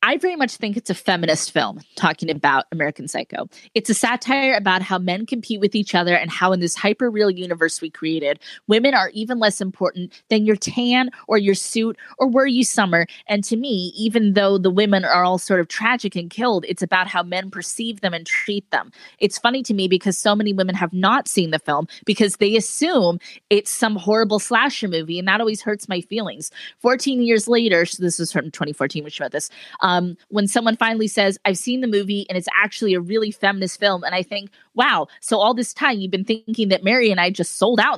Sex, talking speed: female, 225 wpm